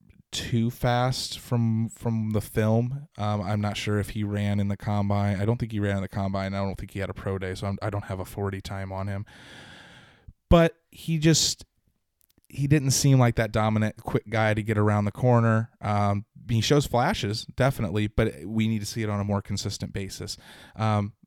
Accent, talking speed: American, 210 wpm